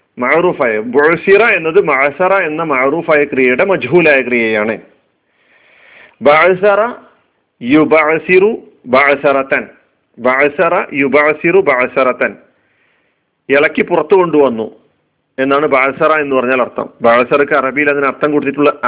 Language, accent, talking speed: Malayalam, native, 90 wpm